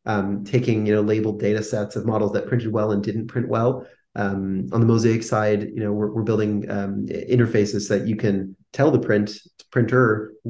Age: 30-49